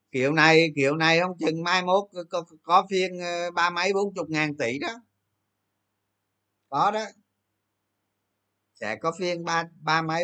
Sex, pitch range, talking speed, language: male, 105-155 Hz, 165 wpm, Vietnamese